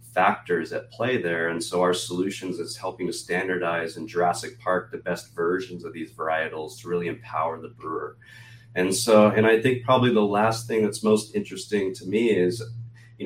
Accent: American